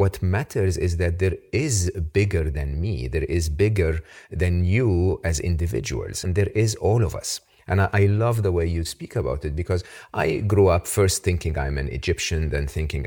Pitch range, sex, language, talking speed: 85-110 Hz, male, English, 195 wpm